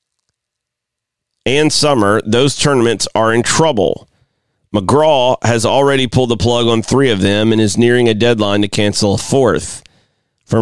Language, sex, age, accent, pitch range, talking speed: English, male, 40-59, American, 105-120 Hz, 155 wpm